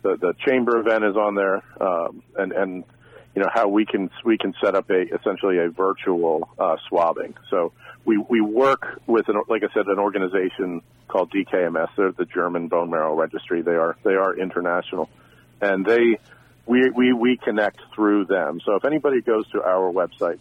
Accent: American